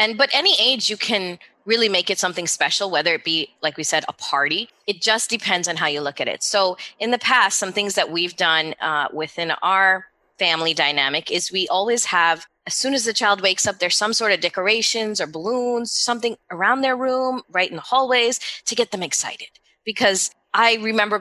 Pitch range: 170-220 Hz